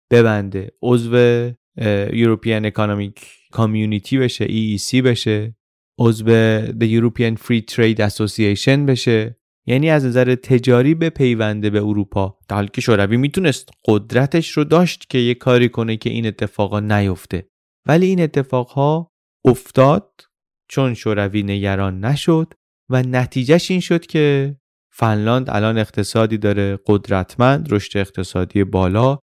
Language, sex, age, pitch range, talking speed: Persian, male, 30-49, 105-130 Hz, 120 wpm